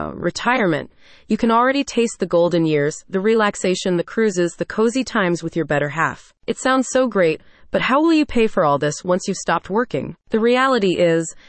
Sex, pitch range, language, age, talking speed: female, 170-230 Hz, English, 30-49, 200 wpm